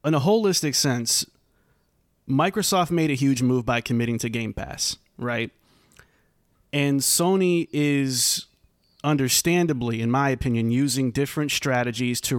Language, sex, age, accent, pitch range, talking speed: English, male, 20-39, American, 125-155 Hz, 125 wpm